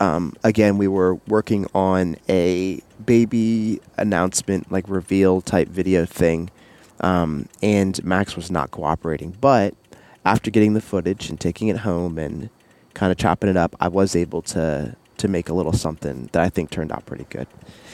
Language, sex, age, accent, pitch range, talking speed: English, male, 20-39, American, 85-110 Hz, 170 wpm